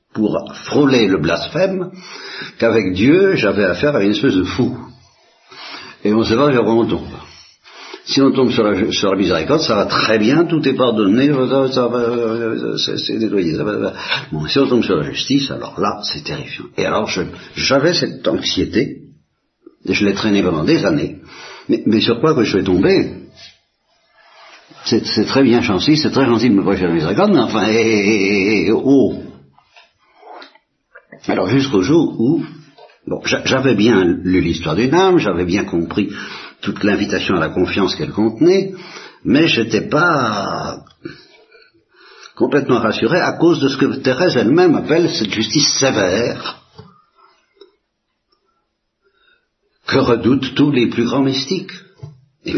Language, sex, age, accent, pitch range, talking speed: Italian, male, 60-79, French, 110-155 Hz, 155 wpm